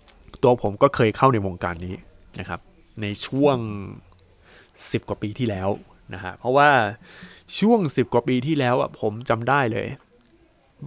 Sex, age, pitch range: male, 20-39, 115-155 Hz